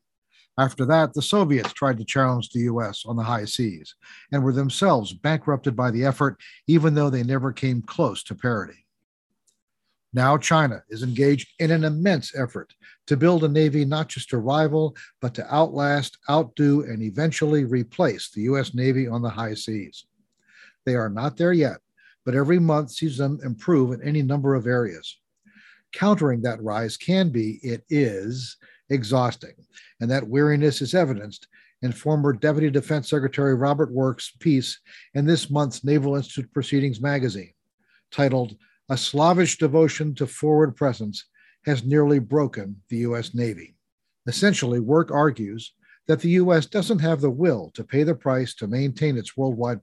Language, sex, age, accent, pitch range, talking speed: English, male, 50-69, American, 120-150 Hz, 160 wpm